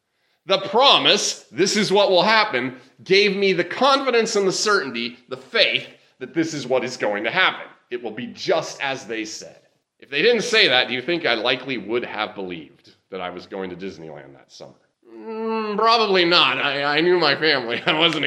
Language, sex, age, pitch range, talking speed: English, male, 30-49, 120-180 Hz, 205 wpm